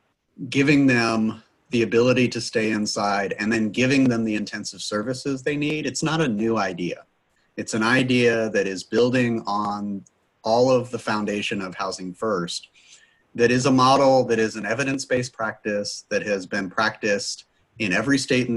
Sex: male